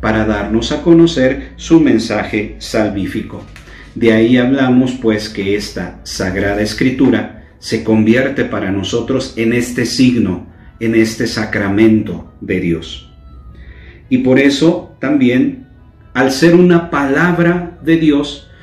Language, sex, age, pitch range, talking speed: Spanish, male, 50-69, 105-140 Hz, 120 wpm